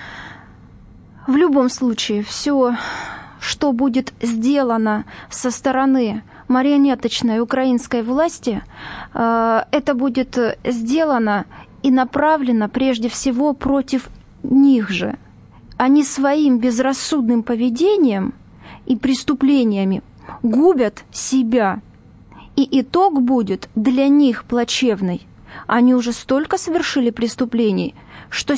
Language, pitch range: Russian, 240-285 Hz